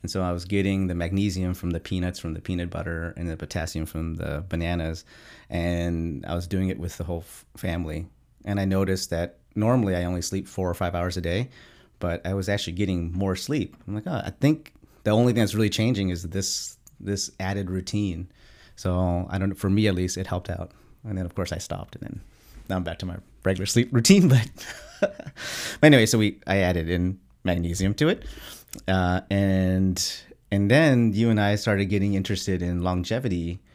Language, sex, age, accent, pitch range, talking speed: English, male, 30-49, American, 85-100 Hz, 210 wpm